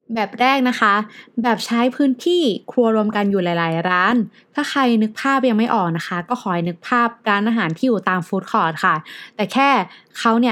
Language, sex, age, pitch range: Thai, female, 20-39, 190-250 Hz